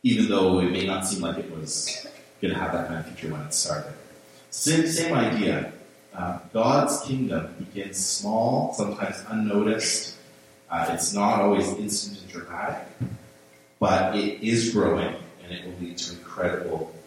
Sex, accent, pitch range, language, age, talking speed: male, American, 85-110 Hz, English, 30-49, 160 wpm